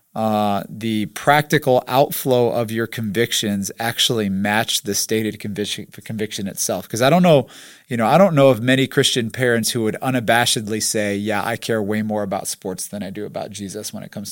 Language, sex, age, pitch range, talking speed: English, male, 30-49, 105-125 Hz, 195 wpm